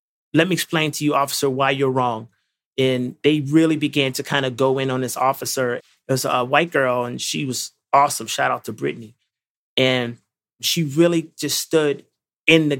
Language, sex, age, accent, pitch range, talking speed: English, male, 30-49, American, 125-160 Hz, 190 wpm